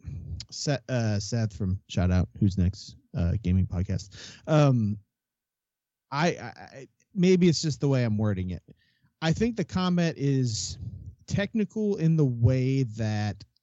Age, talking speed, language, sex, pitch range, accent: 30-49, 135 wpm, English, male, 105-130 Hz, American